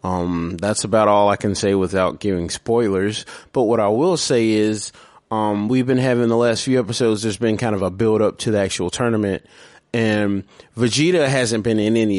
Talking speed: 200 wpm